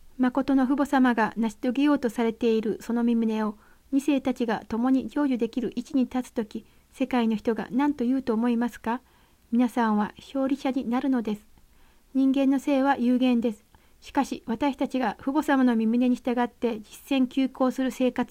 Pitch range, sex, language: 235-270 Hz, female, Japanese